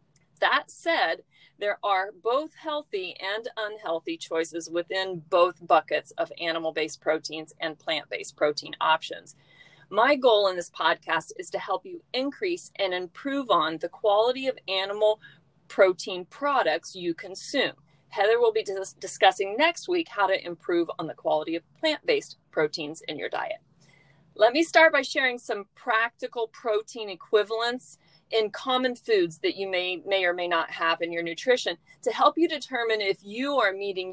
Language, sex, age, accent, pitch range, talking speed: English, female, 40-59, American, 175-260 Hz, 155 wpm